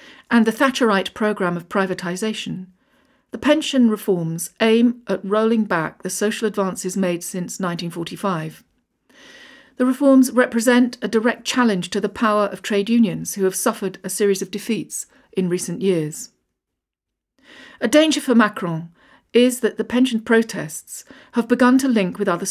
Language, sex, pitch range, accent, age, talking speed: English, female, 190-240 Hz, British, 40-59, 150 wpm